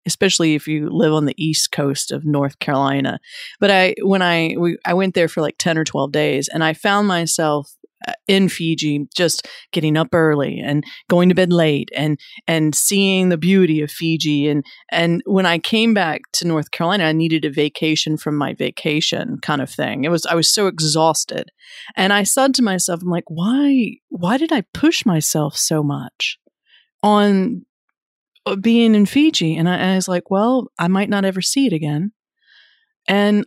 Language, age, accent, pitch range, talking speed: English, 40-59, American, 160-210 Hz, 190 wpm